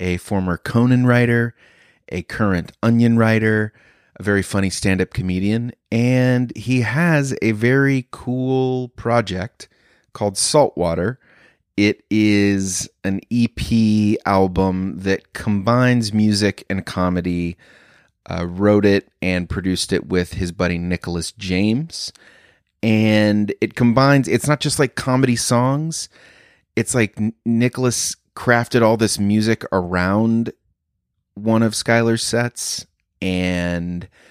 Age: 30-49